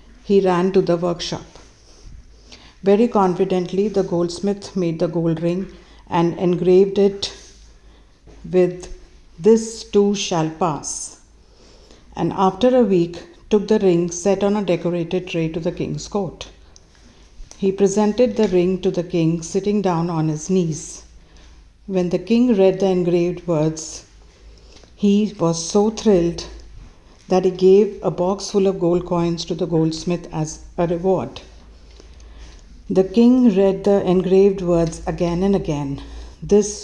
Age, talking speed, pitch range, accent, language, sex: 50-69, 140 wpm, 160-195 Hz, Indian, English, female